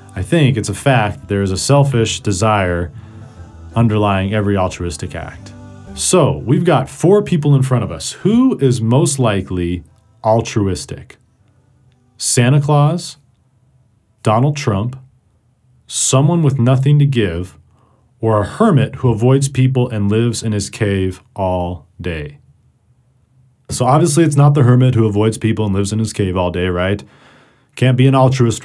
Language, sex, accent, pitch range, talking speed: English, male, American, 100-135 Hz, 150 wpm